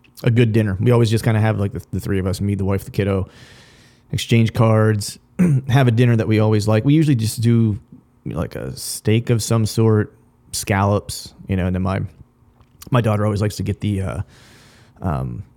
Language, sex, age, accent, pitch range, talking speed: English, male, 30-49, American, 100-120 Hz, 215 wpm